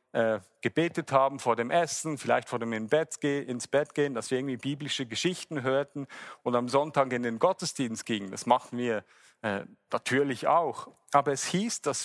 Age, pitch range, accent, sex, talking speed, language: 40-59, 120-150 Hz, German, male, 170 wpm, German